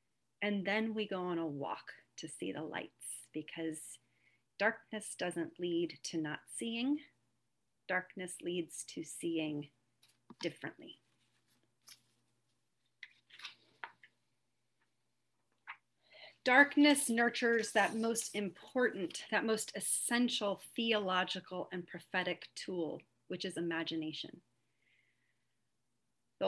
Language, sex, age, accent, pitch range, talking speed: English, female, 40-59, American, 155-210 Hz, 90 wpm